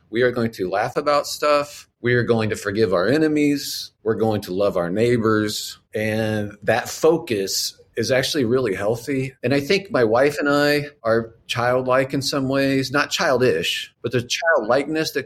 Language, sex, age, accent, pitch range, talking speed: English, male, 40-59, American, 105-140 Hz, 175 wpm